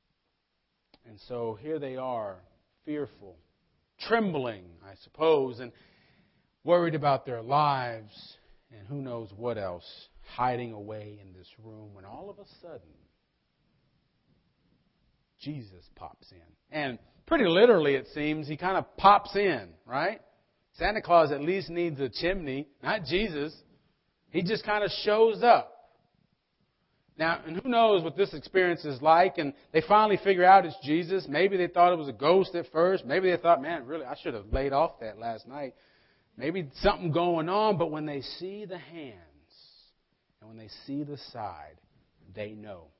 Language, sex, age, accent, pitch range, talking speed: English, male, 40-59, American, 125-190 Hz, 160 wpm